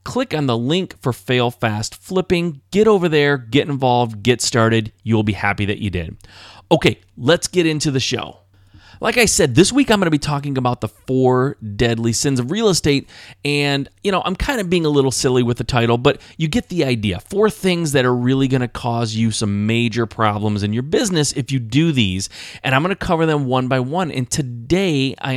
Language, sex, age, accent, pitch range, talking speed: English, male, 30-49, American, 115-160 Hz, 215 wpm